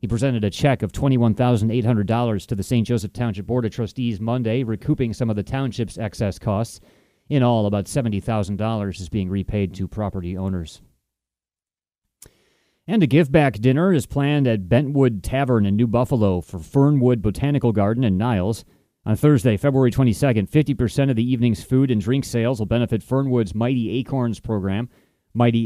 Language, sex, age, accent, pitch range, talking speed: English, male, 30-49, American, 105-125 Hz, 160 wpm